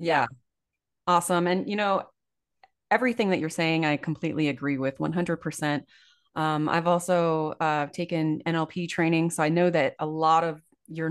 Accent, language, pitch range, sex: American, English, 155-180 Hz, female